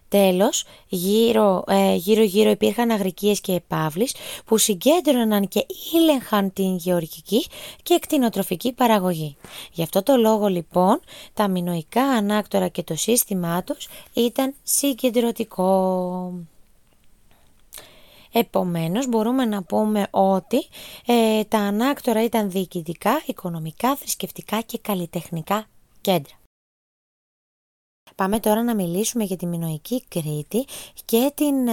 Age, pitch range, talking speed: 20-39, 180-235 Hz, 100 wpm